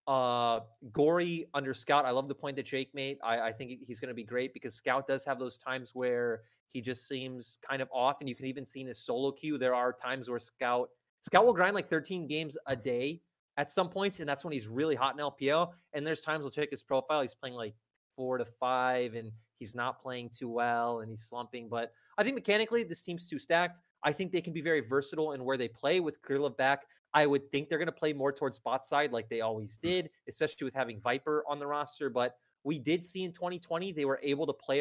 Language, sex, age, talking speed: English, male, 20-39, 245 wpm